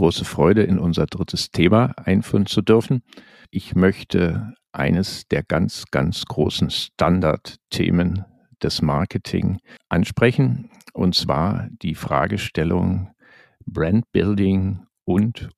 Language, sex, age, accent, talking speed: German, male, 50-69, German, 105 wpm